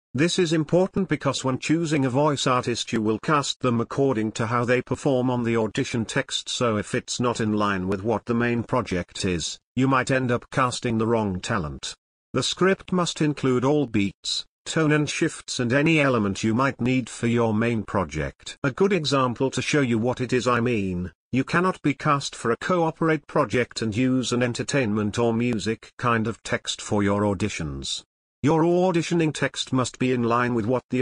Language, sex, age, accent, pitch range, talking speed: English, male, 50-69, British, 110-140 Hz, 195 wpm